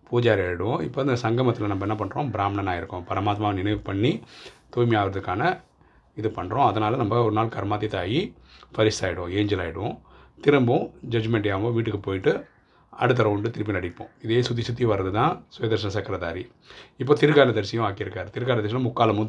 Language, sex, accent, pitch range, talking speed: Tamil, male, native, 100-115 Hz, 145 wpm